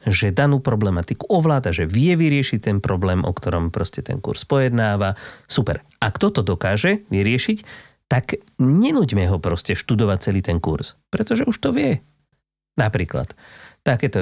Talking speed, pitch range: 145 wpm, 95-135 Hz